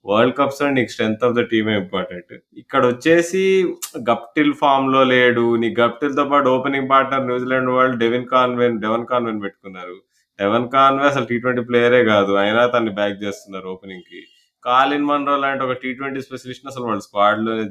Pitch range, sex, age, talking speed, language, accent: 115-140 Hz, male, 20-39, 175 wpm, Telugu, native